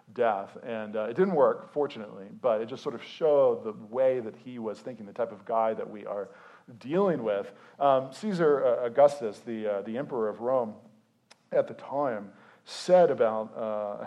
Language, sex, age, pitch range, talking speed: English, male, 40-59, 110-180 Hz, 190 wpm